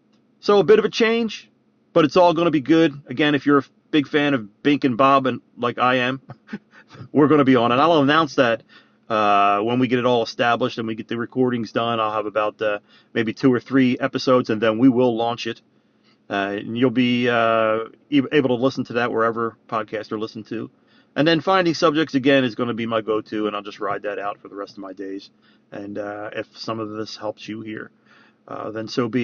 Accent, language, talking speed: American, English, 235 wpm